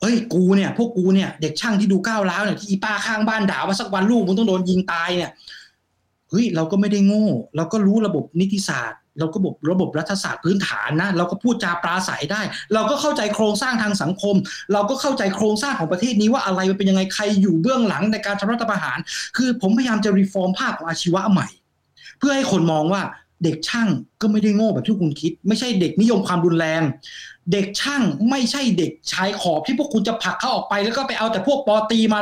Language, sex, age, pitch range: Thai, male, 20-39, 185-225 Hz